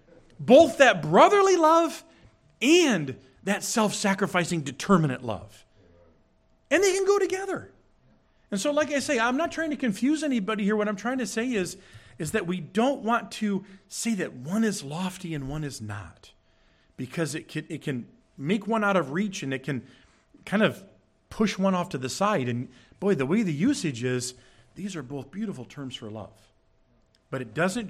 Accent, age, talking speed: American, 40-59, 185 wpm